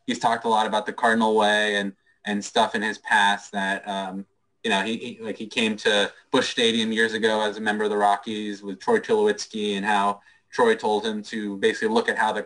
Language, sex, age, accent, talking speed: English, male, 20-39, American, 230 wpm